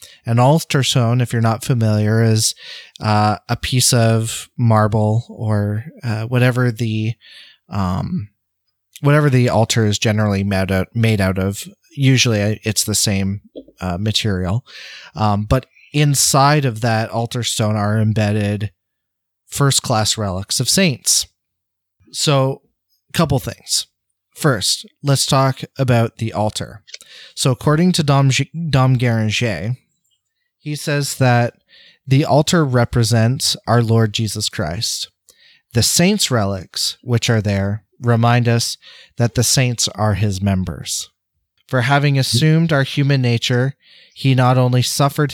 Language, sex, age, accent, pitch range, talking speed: English, male, 30-49, American, 105-135 Hz, 130 wpm